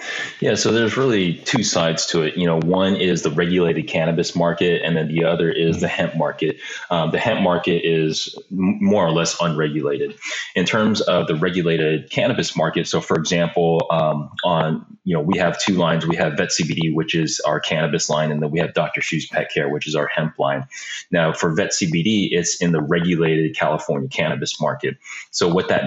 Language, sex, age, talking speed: English, male, 30-49, 200 wpm